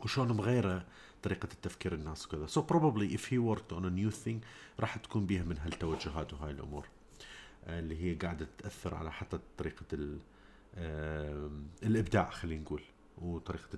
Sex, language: male, Arabic